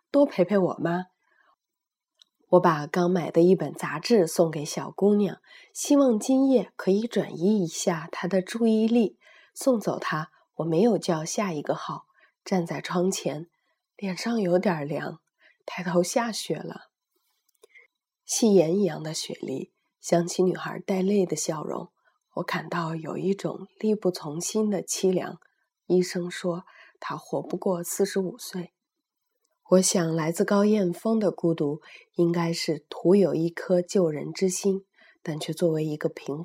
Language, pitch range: Chinese, 170-215 Hz